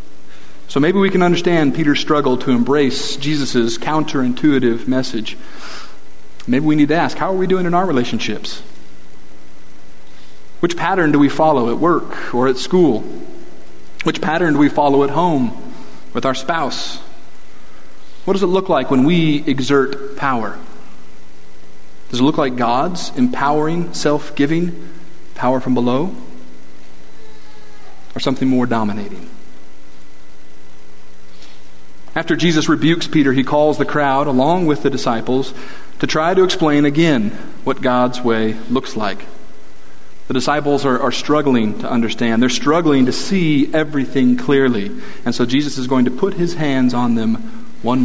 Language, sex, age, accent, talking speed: English, male, 40-59, American, 145 wpm